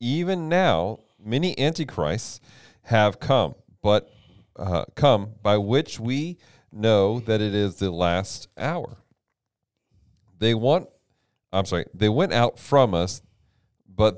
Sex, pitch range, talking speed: male, 95-120 Hz, 125 wpm